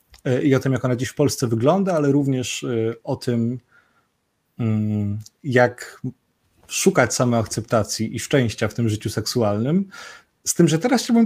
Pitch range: 110-150 Hz